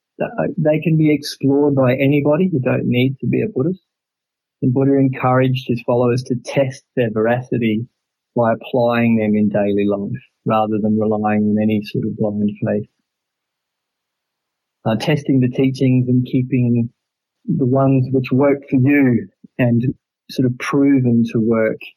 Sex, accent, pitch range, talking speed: male, Australian, 110-130 Hz, 150 wpm